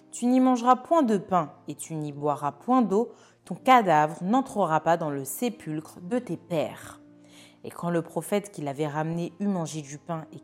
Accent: French